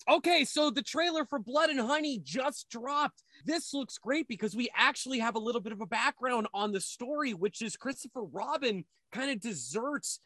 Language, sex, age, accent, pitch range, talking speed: English, male, 30-49, American, 210-285 Hz, 195 wpm